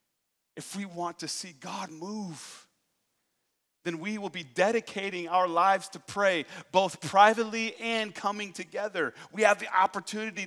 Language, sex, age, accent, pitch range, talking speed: English, male, 40-59, American, 165-210 Hz, 145 wpm